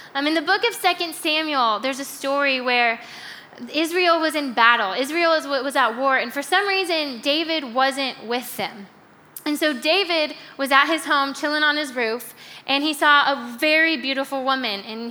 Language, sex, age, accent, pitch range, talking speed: English, female, 10-29, American, 250-320 Hz, 180 wpm